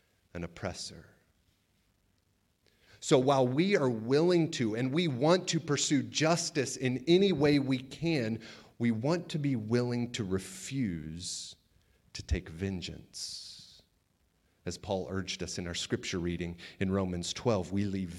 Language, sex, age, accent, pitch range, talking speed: English, male, 40-59, American, 95-125 Hz, 140 wpm